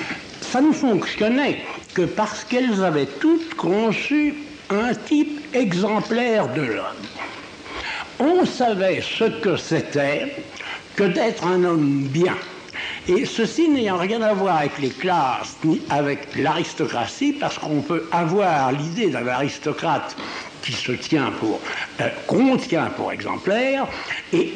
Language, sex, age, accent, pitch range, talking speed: French, male, 60-79, French, 170-255 Hz, 125 wpm